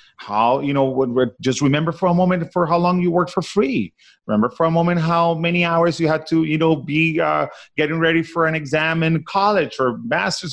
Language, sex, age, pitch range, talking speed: English, male, 30-49, 115-175 Hz, 215 wpm